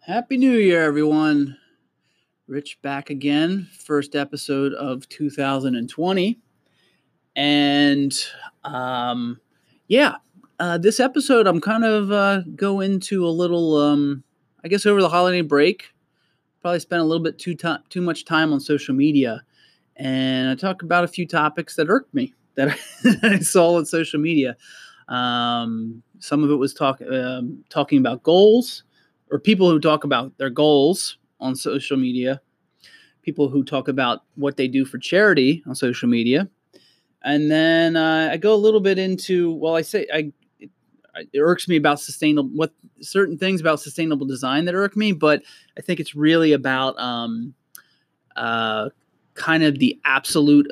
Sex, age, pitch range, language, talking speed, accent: male, 30-49, 135-180 Hz, English, 160 wpm, American